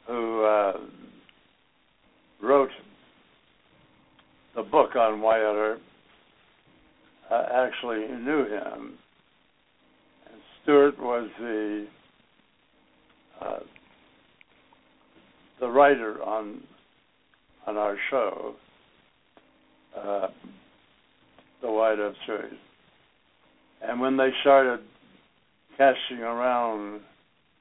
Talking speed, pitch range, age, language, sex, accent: 70 wpm, 110-130 Hz, 60-79, English, male, American